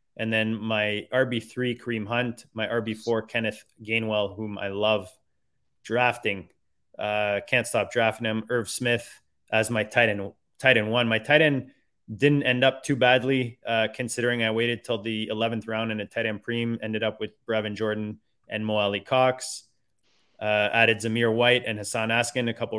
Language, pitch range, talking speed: English, 105-120 Hz, 175 wpm